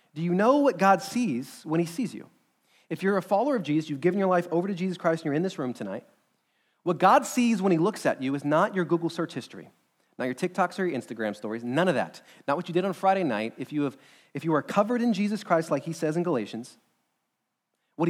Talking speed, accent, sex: 260 wpm, American, male